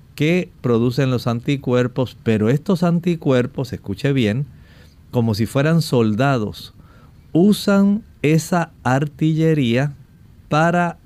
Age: 50-69